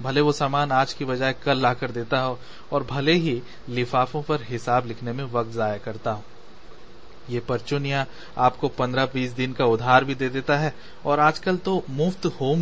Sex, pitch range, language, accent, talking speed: male, 125-150 Hz, Hindi, native, 180 wpm